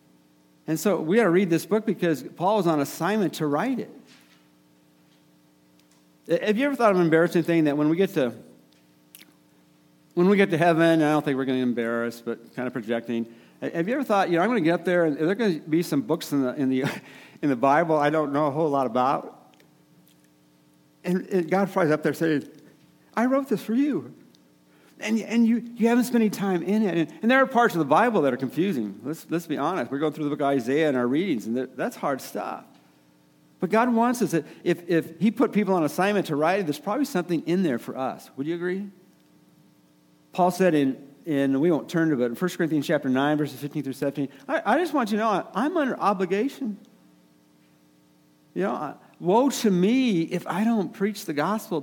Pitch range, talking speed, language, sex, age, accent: 120-190 Hz, 230 wpm, English, male, 50-69, American